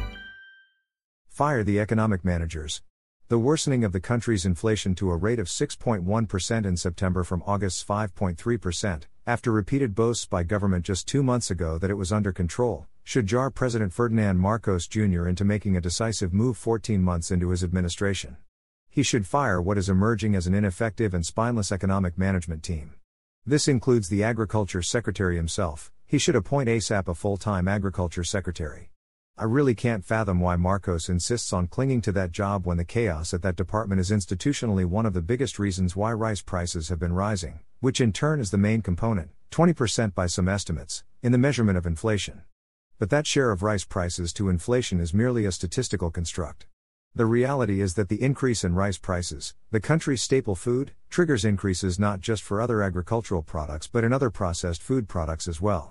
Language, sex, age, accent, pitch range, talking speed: English, male, 50-69, American, 90-115 Hz, 180 wpm